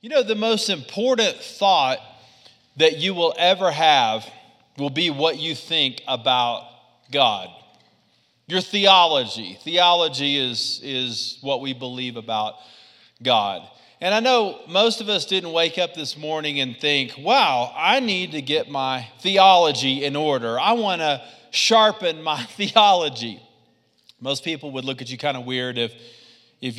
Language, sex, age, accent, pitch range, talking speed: English, male, 40-59, American, 135-210 Hz, 150 wpm